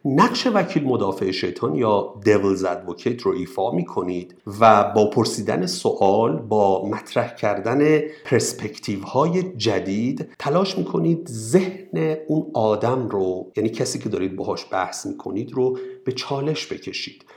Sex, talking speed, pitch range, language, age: male, 135 wpm, 110-170 Hz, Persian, 50-69